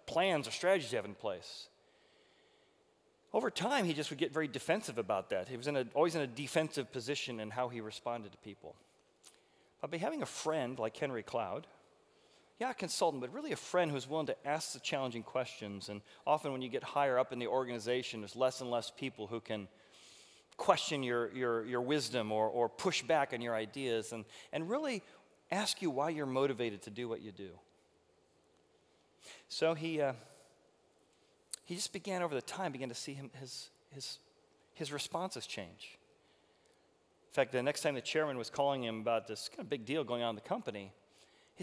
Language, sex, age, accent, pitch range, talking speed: English, male, 30-49, American, 120-155 Hz, 195 wpm